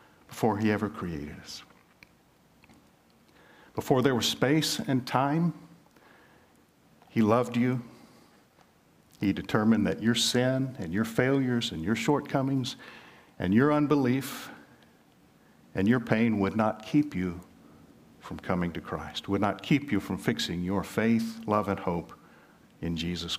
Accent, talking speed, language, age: American, 135 wpm, English, 50-69